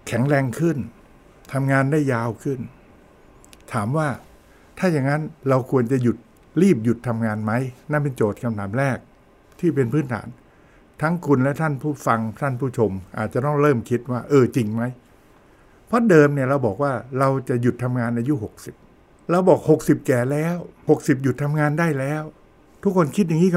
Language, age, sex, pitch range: Thai, 60-79, male, 120-155 Hz